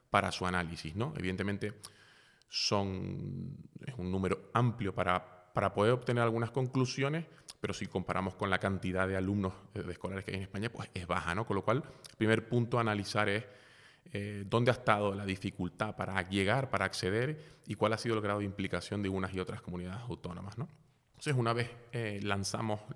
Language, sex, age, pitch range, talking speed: Spanish, male, 20-39, 95-115 Hz, 190 wpm